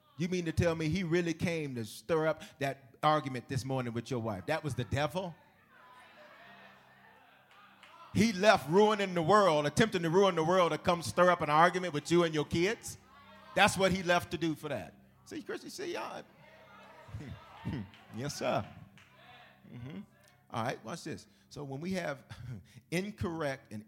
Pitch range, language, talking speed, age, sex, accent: 115-175 Hz, English, 175 wpm, 40-59, male, American